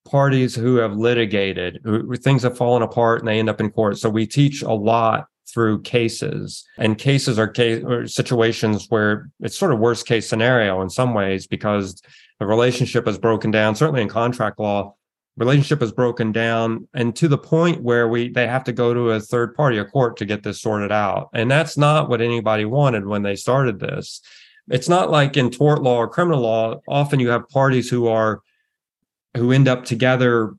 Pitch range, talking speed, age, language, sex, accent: 115-140 Hz, 200 wpm, 30-49, English, male, American